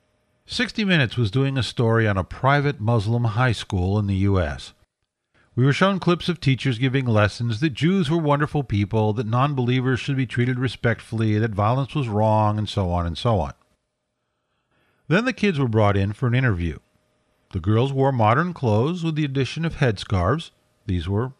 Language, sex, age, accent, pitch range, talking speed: English, male, 50-69, American, 105-140 Hz, 180 wpm